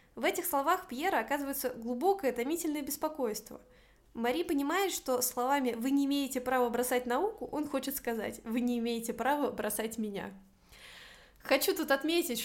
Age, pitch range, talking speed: 20-39, 225-265 Hz, 145 wpm